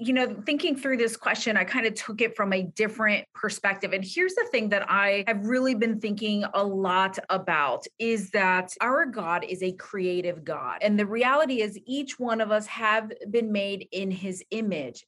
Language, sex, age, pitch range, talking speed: English, female, 30-49, 200-250 Hz, 200 wpm